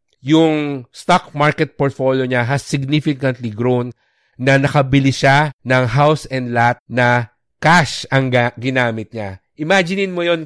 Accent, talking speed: Filipino, 130 wpm